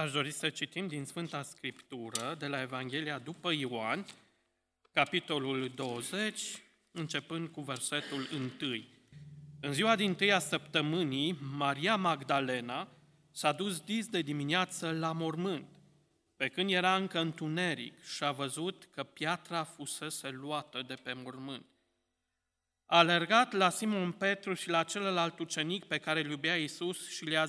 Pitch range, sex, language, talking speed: 145-185 Hz, male, Romanian, 140 wpm